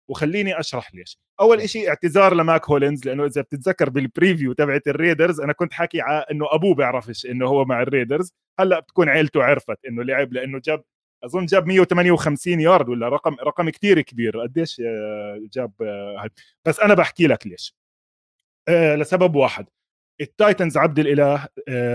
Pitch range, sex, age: 125-180 Hz, male, 20-39